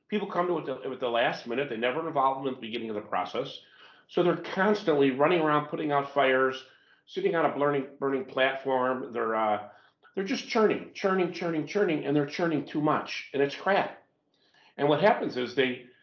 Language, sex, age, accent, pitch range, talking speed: English, male, 50-69, American, 130-175 Hz, 200 wpm